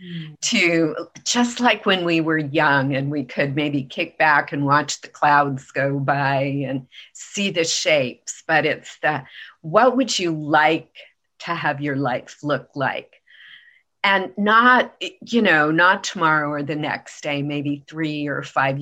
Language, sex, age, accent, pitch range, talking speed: English, female, 40-59, American, 140-180 Hz, 160 wpm